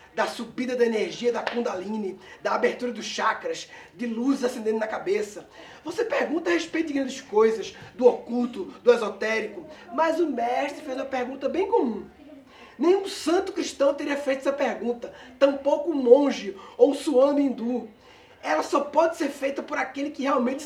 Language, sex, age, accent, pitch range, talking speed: Portuguese, male, 20-39, Brazilian, 255-345 Hz, 165 wpm